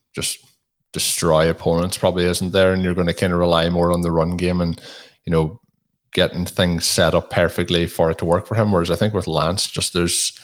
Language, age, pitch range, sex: English, 20-39, 85-95 Hz, male